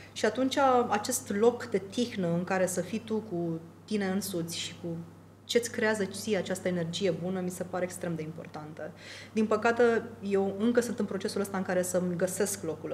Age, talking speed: 20-39, 190 wpm